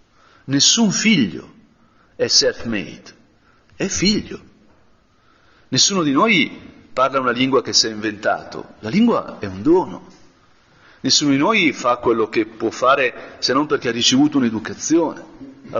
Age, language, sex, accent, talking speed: 40-59, Italian, male, native, 135 wpm